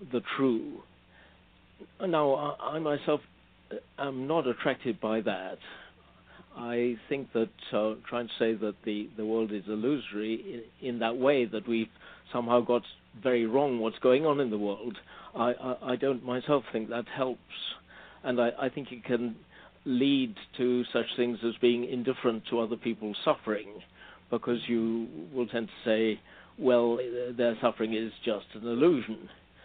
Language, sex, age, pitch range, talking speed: English, male, 50-69, 115-135 Hz, 160 wpm